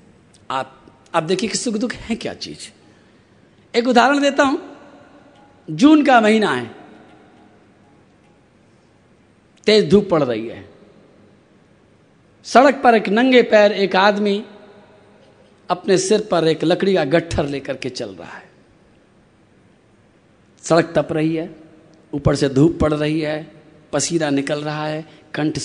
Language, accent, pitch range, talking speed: Hindi, native, 150-225 Hz, 130 wpm